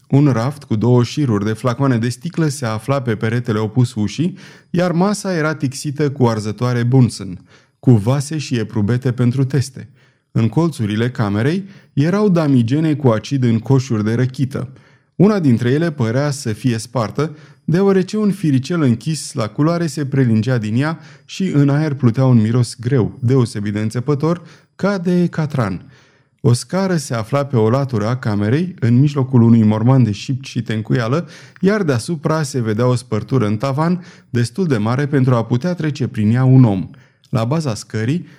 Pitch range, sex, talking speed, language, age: 120-155 Hz, male, 170 wpm, Romanian, 30-49